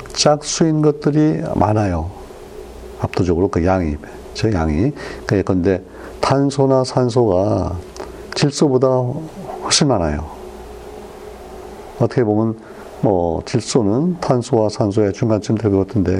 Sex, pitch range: male, 95-130 Hz